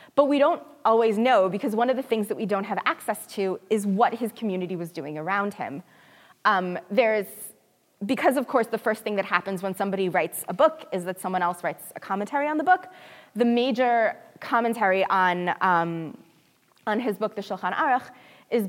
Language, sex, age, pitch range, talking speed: English, female, 20-39, 190-255 Hz, 200 wpm